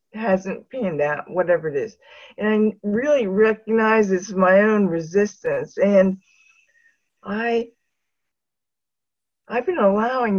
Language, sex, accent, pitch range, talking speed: English, female, American, 190-230 Hz, 115 wpm